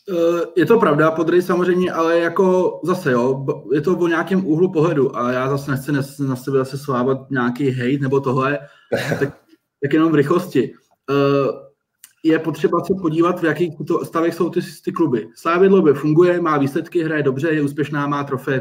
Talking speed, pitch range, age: 170 wpm, 140-160 Hz, 20-39